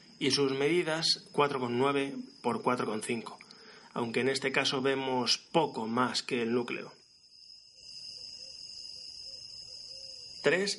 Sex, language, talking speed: male, Spanish, 95 wpm